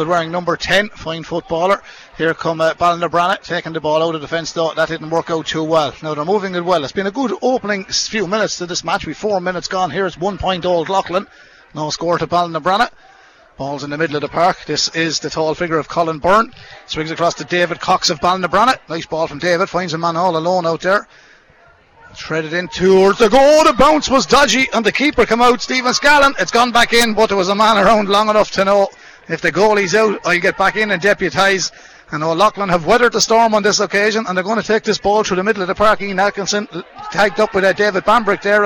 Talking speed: 240 wpm